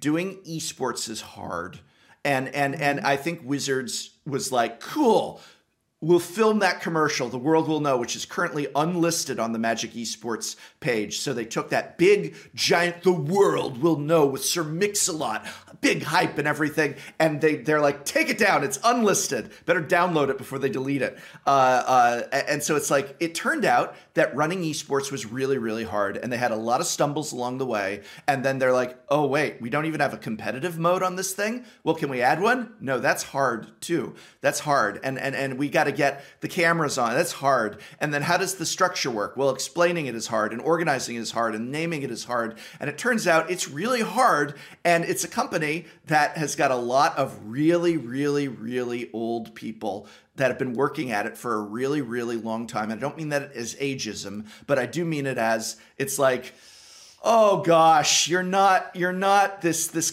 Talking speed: 205 wpm